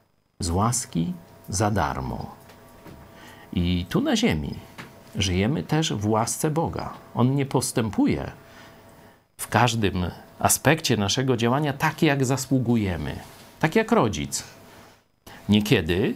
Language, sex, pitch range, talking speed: Polish, male, 95-130 Hz, 105 wpm